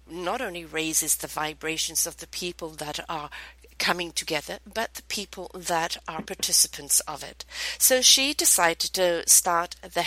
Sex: female